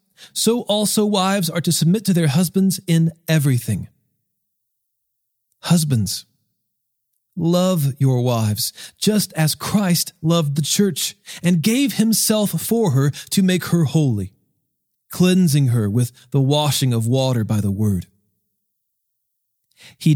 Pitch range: 125-170 Hz